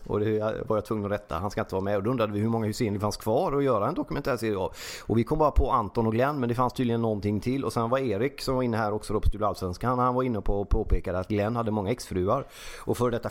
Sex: male